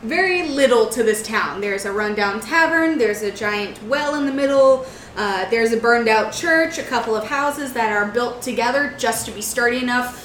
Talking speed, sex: 205 wpm, female